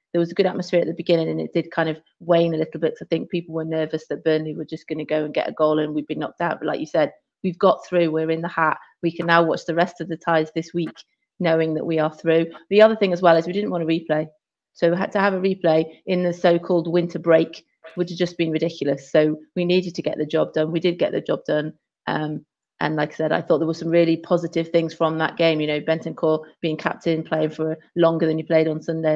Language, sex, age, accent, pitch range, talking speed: English, female, 30-49, British, 160-180 Hz, 280 wpm